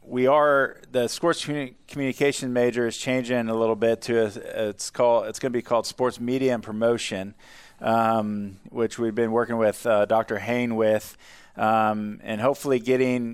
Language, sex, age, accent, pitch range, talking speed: English, male, 20-39, American, 110-120 Hz, 165 wpm